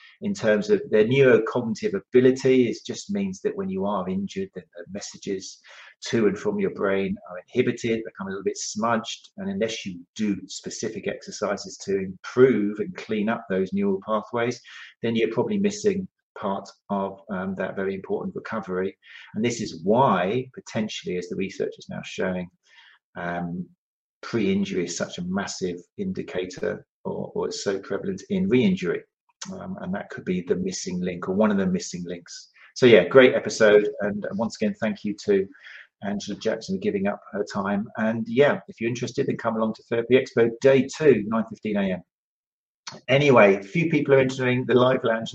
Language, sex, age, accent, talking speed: English, male, 40-59, British, 175 wpm